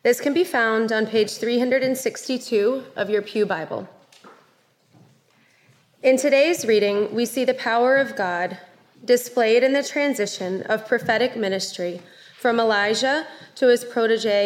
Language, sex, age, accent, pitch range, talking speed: English, female, 20-39, American, 195-255 Hz, 135 wpm